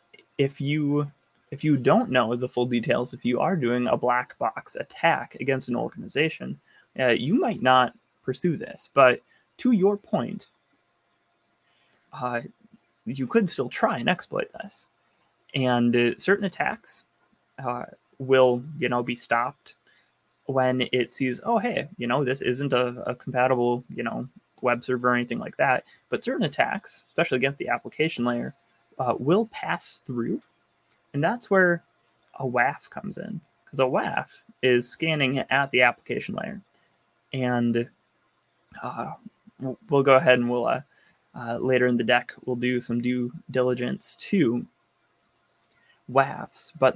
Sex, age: male, 20-39